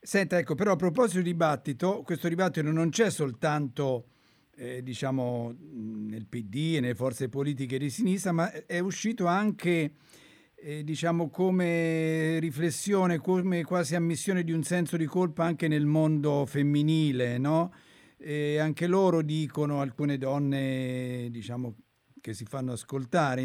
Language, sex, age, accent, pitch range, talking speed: Italian, male, 50-69, native, 130-165 Hz, 140 wpm